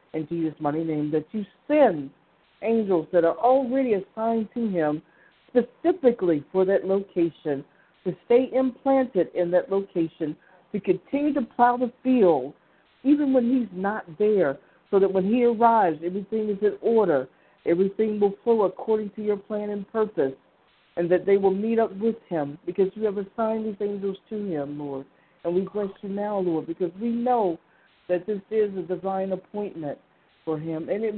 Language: English